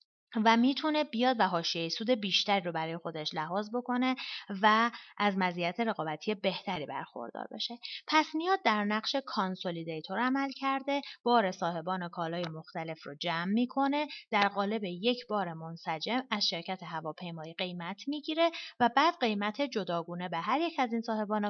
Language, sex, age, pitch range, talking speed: Persian, female, 30-49, 185-255 Hz, 150 wpm